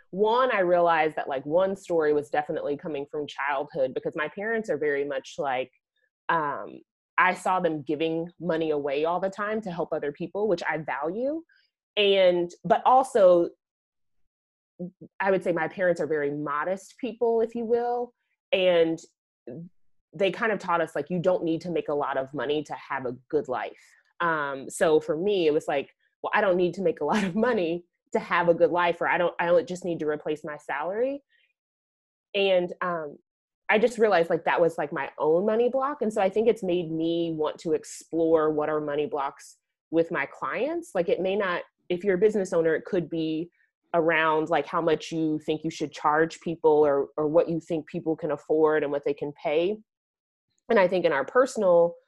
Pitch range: 155-220 Hz